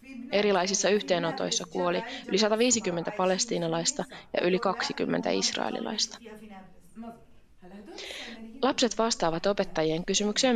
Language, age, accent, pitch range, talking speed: Finnish, 20-39, native, 180-240 Hz, 80 wpm